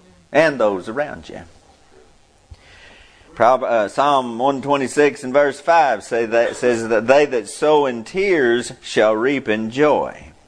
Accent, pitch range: American, 110-150 Hz